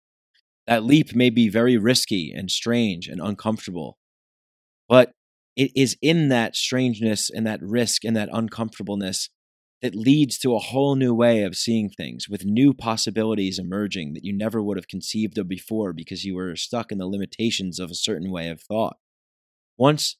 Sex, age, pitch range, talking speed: male, 20-39, 95-120 Hz, 170 wpm